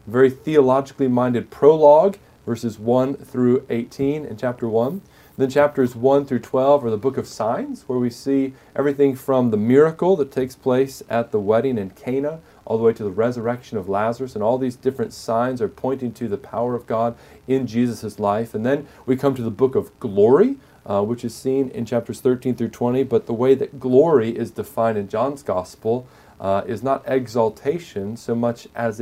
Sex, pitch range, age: male, 105-130 Hz, 40-59